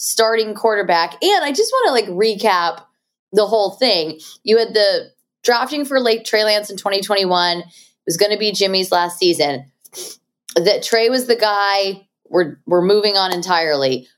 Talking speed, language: 170 wpm, English